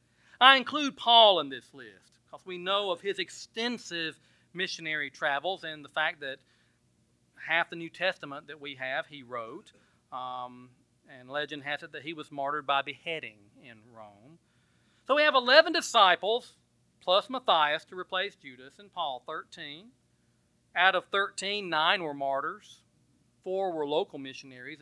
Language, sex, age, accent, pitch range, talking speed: English, male, 40-59, American, 145-230 Hz, 150 wpm